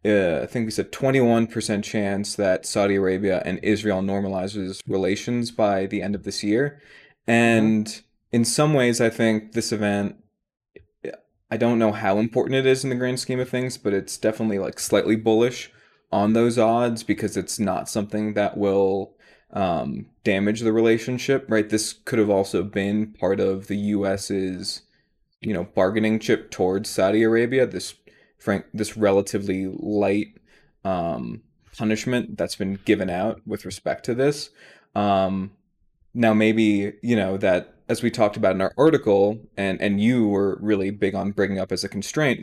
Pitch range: 100-115 Hz